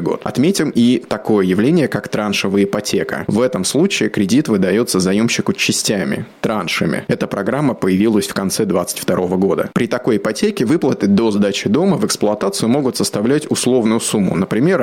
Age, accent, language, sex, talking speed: 20-39, native, Russian, male, 145 wpm